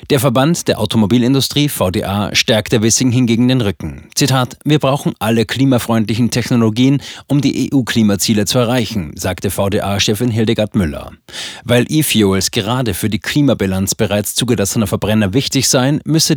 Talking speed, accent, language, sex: 135 wpm, German, German, male